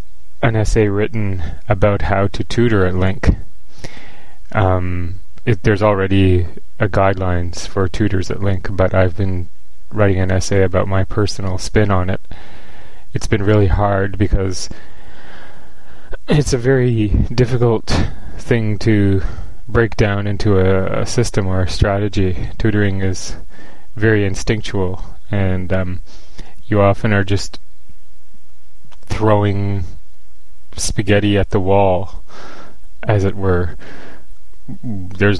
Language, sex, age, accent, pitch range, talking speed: English, male, 20-39, American, 90-105 Hz, 120 wpm